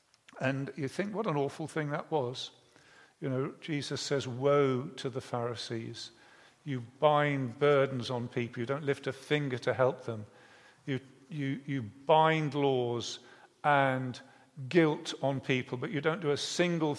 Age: 50-69